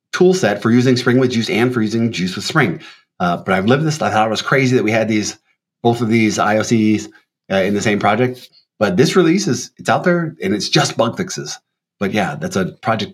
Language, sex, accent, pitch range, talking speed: English, male, American, 100-140 Hz, 240 wpm